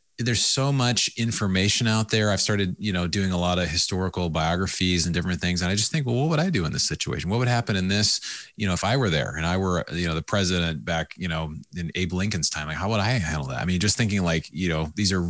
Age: 30-49